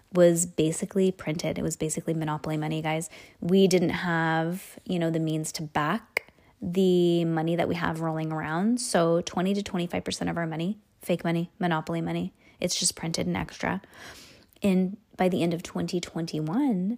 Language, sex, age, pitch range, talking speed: English, female, 20-39, 165-200 Hz, 165 wpm